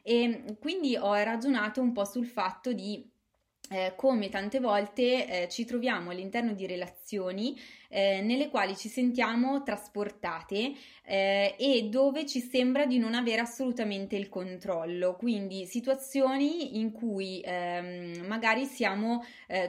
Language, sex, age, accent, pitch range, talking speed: Italian, female, 20-39, native, 195-235 Hz, 130 wpm